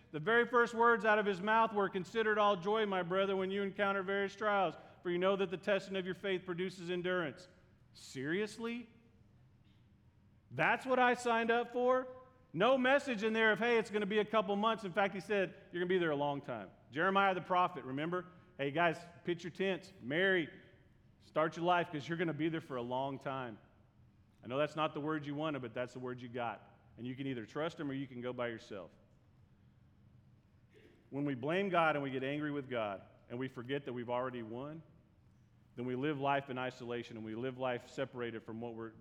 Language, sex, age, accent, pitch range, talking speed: English, male, 40-59, American, 120-195 Hz, 220 wpm